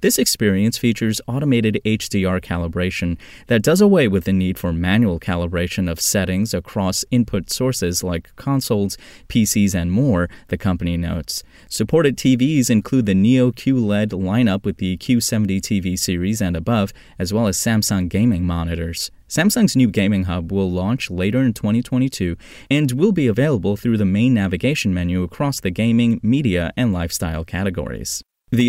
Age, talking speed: 20-39, 155 wpm